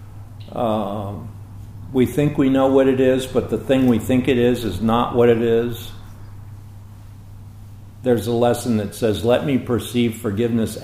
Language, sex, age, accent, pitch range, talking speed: English, male, 50-69, American, 100-125 Hz, 160 wpm